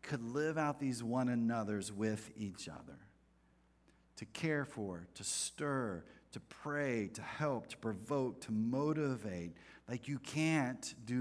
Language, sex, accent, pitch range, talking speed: English, male, American, 100-140 Hz, 140 wpm